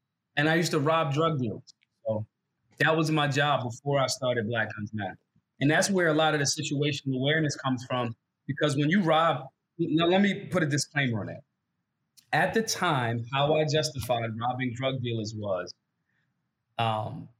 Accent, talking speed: American, 180 wpm